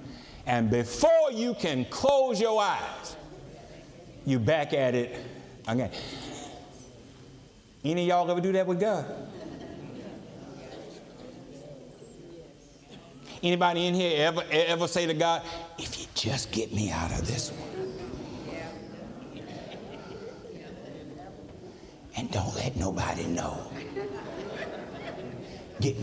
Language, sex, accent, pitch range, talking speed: English, male, American, 105-140 Hz, 100 wpm